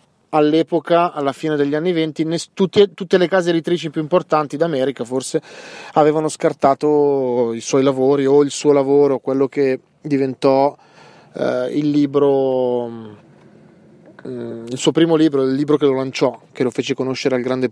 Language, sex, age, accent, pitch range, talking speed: Italian, male, 30-49, native, 130-165 Hz, 155 wpm